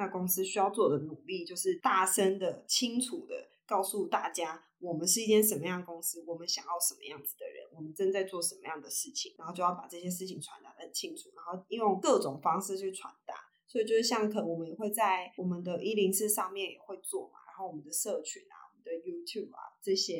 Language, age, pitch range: Chinese, 20-39, 180-290 Hz